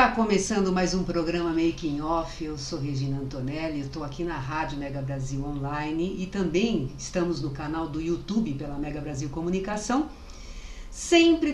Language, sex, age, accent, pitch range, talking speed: Portuguese, female, 60-79, Brazilian, 165-230 Hz, 150 wpm